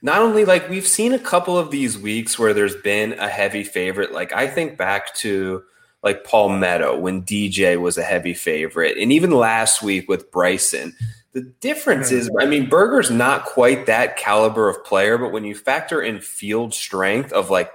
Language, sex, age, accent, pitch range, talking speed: English, male, 20-39, American, 105-145 Hz, 195 wpm